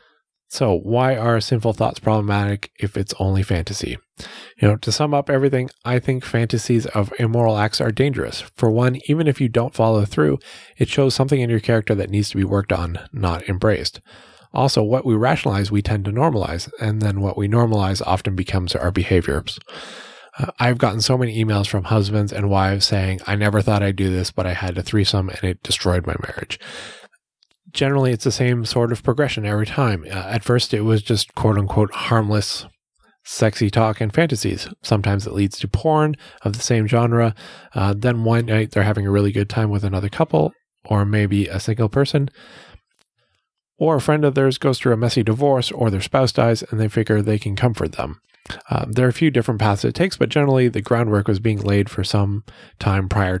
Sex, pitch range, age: male, 100-125 Hz, 20-39